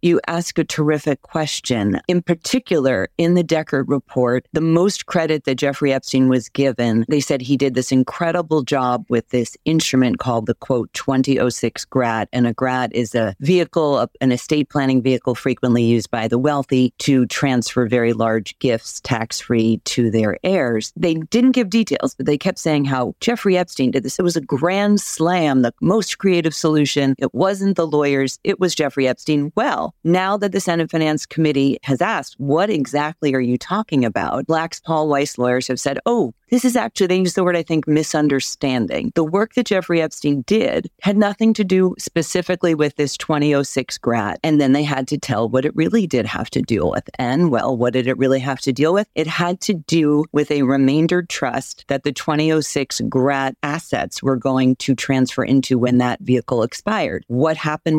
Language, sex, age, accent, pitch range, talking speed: English, female, 40-59, American, 130-165 Hz, 190 wpm